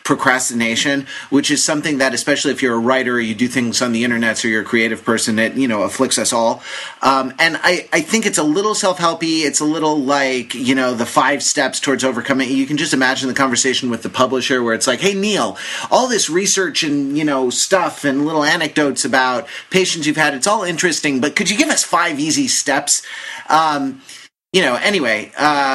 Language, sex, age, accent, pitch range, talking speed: English, male, 30-49, American, 130-165 Hz, 215 wpm